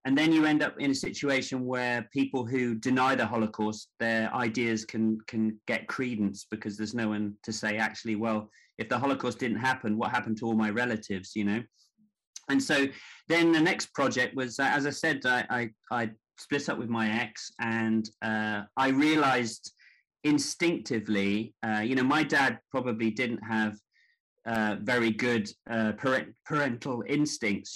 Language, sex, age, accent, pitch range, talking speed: English, male, 30-49, British, 110-130 Hz, 170 wpm